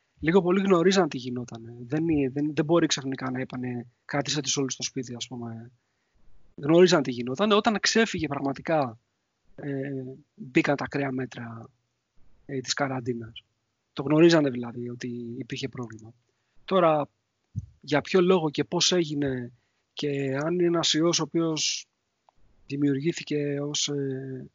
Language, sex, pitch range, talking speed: Greek, male, 130-160 Hz, 140 wpm